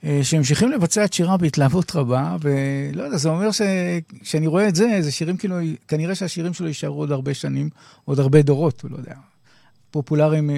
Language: Hebrew